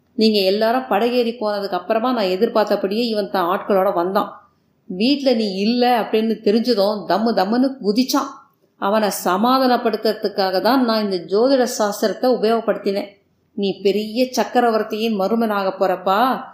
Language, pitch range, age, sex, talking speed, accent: Tamil, 200-245 Hz, 30-49, female, 115 wpm, native